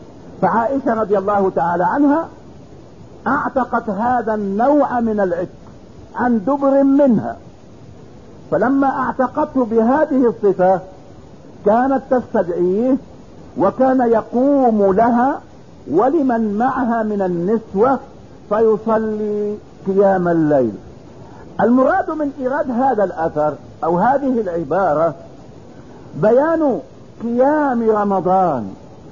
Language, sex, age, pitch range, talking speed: English, male, 50-69, 195-255 Hz, 80 wpm